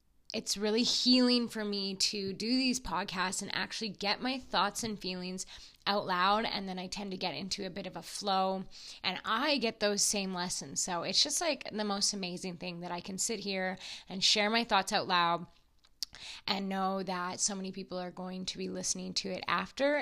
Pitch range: 185-220 Hz